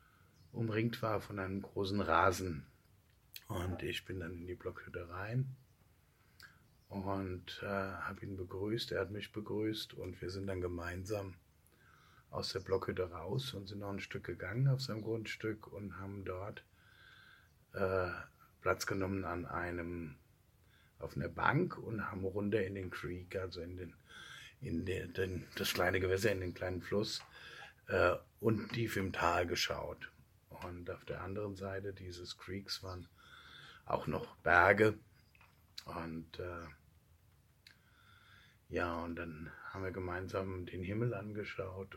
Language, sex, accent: German, male, German